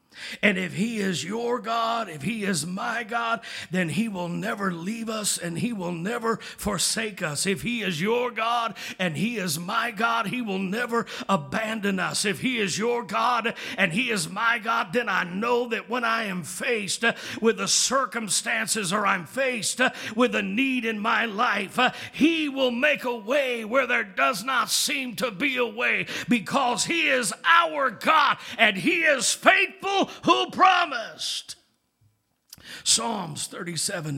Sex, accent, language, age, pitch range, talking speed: male, American, English, 50-69, 180-235 Hz, 165 wpm